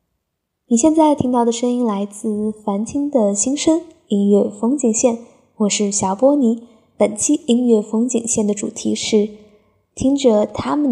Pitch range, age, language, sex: 210-260 Hz, 20-39, Chinese, female